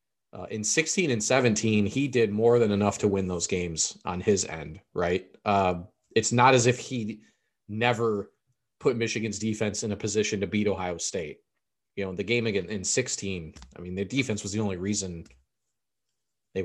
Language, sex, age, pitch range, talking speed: English, male, 30-49, 100-125 Hz, 185 wpm